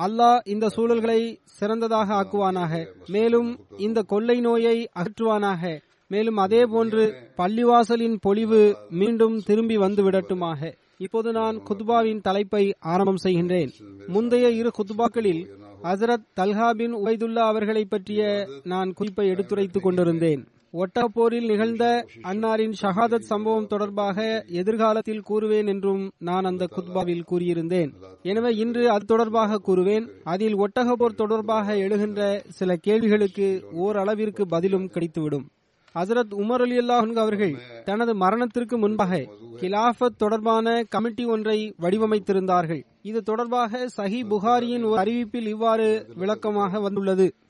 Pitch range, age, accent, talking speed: 190-230 Hz, 30-49, native, 105 wpm